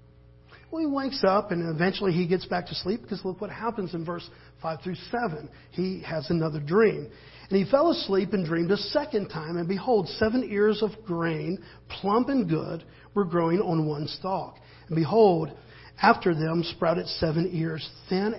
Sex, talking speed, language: male, 180 wpm, English